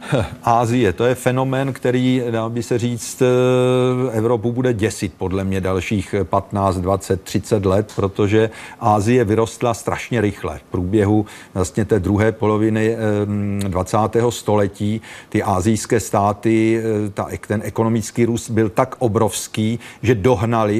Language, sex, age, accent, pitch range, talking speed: Czech, male, 40-59, native, 100-115 Hz, 125 wpm